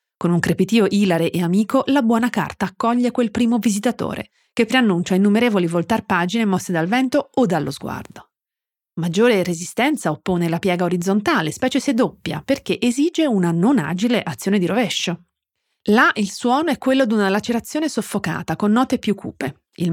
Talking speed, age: 165 wpm, 40-59